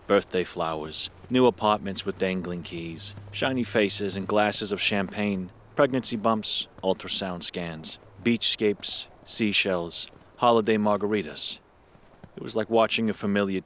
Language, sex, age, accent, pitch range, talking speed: English, male, 30-49, American, 95-125 Hz, 125 wpm